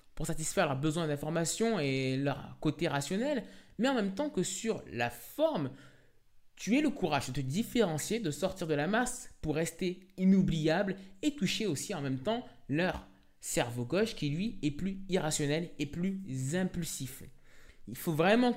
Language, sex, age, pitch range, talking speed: French, male, 20-39, 145-200 Hz, 170 wpm